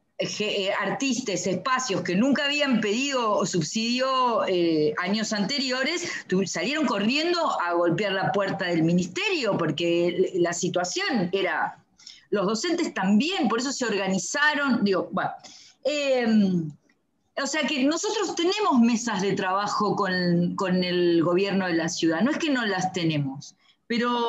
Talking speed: 135 wpm